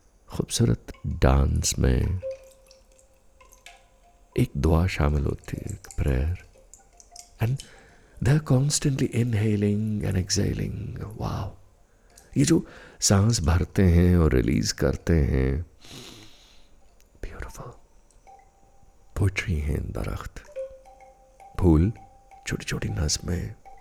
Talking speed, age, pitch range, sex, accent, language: 70 wpm, 50-69, 75-110 Hz, male, native, Hindi